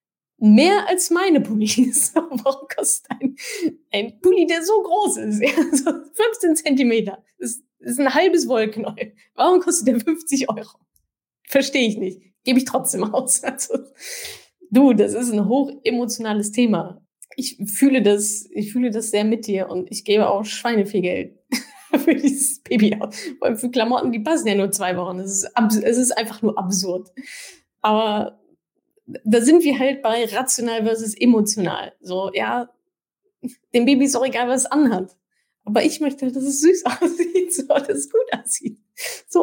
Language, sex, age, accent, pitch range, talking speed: German, female, 10-29, German, 210-275 Hz, 170 wpm